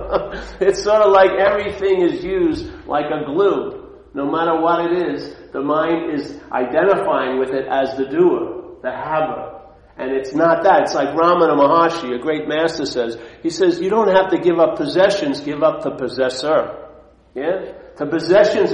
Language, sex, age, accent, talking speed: English, male, 50-69, American, 175 wpm